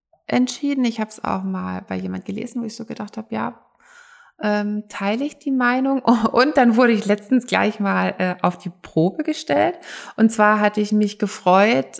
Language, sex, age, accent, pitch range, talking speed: German, female, 20-39, German, 190-260 Hz, 190 wpm